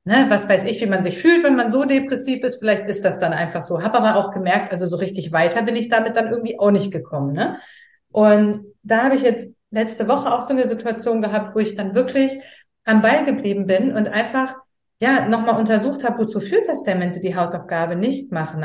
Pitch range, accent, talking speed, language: 190-230 Hz, German, 230 wpm, German